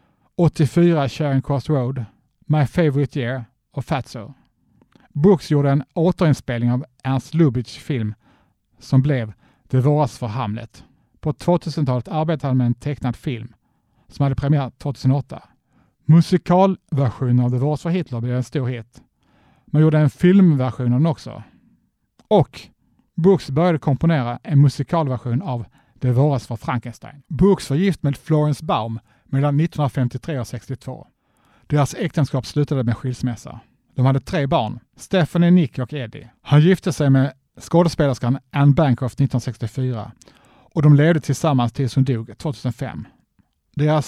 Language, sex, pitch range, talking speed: Swedish, male, 125-155 Hz, 140 wpm